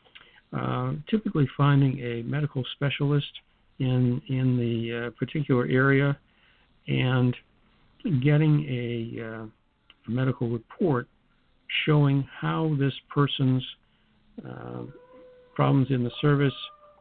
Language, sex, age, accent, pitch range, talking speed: English, male, 60-79, American, 125-155 Hz, 100 wpm